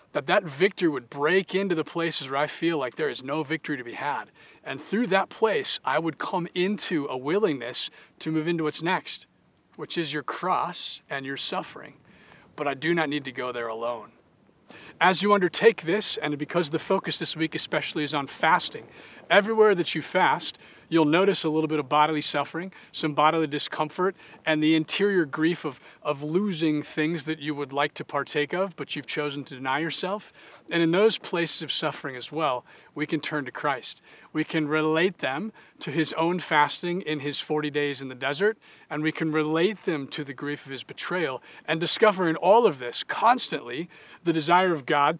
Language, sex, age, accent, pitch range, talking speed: English, male, 40-59, American, 150-180 Hz, 200 wpm